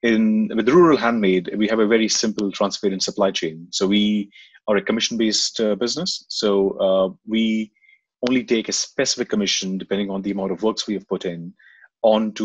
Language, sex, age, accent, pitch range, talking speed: English, male, 30-49, Indian, 95-110 Hz, 185 wpm